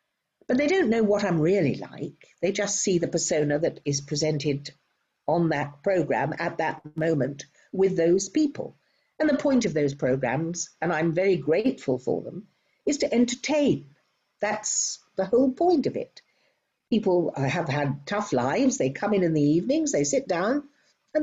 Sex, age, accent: female, 60-79, British